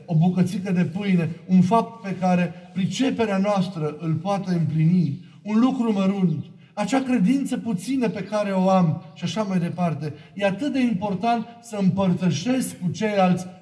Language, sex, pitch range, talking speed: Romanian, male, 160-205 Hz, 155 wpm